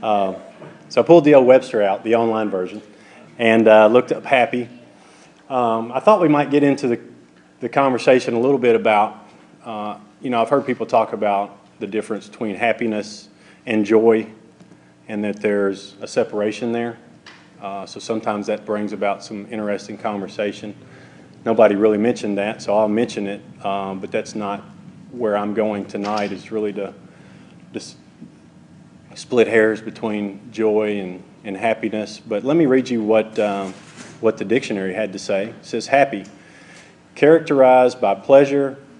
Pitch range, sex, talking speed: 100-115 Hz, male, 160 wpm